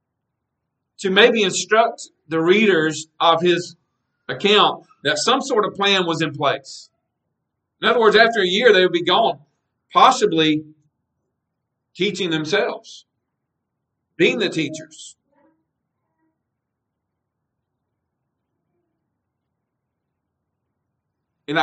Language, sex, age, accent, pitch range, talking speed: English, male, 50-69, American, 135-190 Hz, 90 wpm